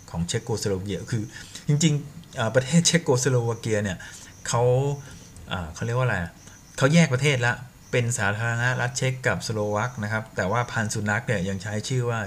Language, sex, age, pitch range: Thai, male, 20-39, 95-120 Hz